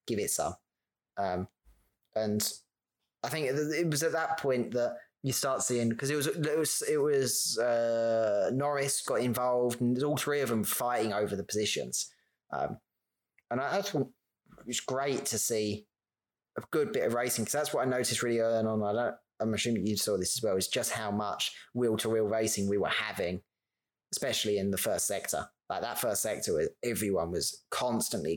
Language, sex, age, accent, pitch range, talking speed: English, male, 20-39, British, 110-145 Hz, 190 wpm